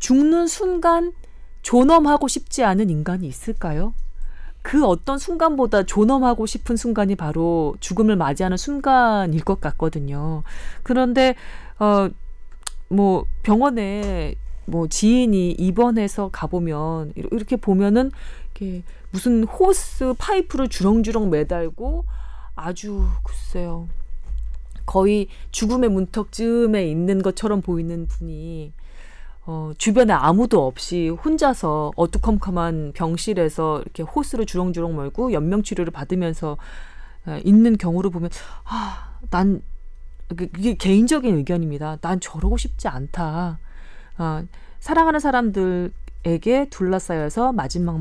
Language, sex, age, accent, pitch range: Korean, female, 30-49, native, 165-235 Hz